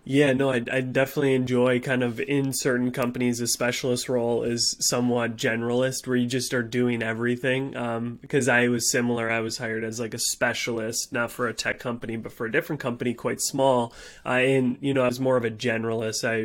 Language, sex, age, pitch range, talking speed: English, male, 20-39, 115-130 Hz, 210 wpm